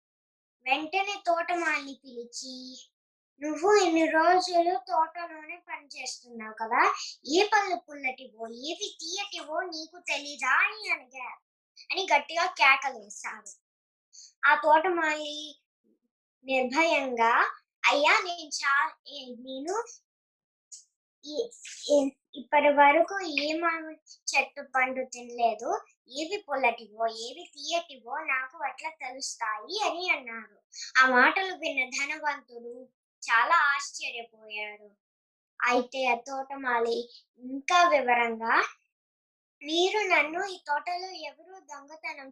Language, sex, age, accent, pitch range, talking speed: Telugu, male, 20-39, native, 250-335 Hz, 80 wpm